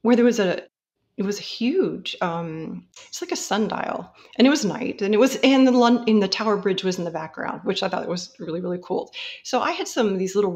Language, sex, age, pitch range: English, female, 40-59, 180-245 Hz